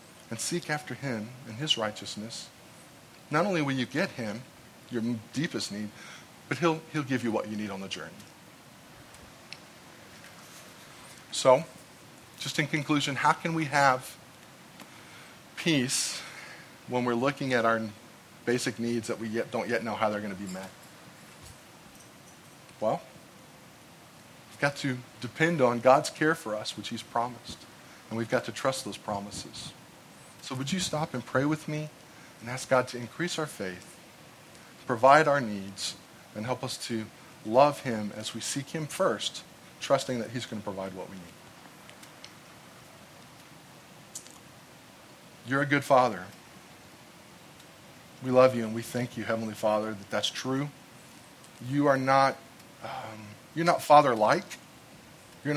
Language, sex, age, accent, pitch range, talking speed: English, male, 40-59, American, 110-145 Hz, 145 wpm